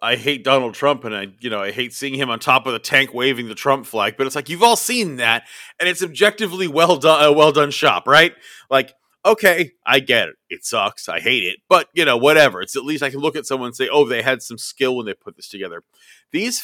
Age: 30-49